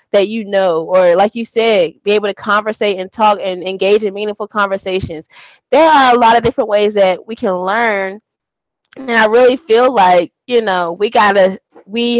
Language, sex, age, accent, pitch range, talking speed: English, female, 20-39, American, 205-260 Hz, 190 wpm